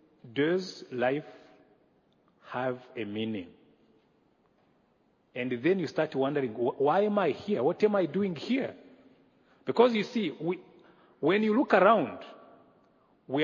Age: 40-59